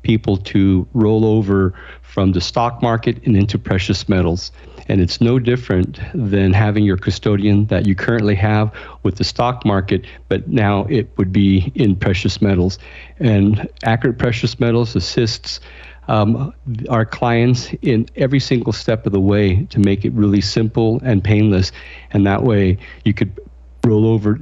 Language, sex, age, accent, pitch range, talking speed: English, male, 50-69, American, 100-120 Hz, 160 wpm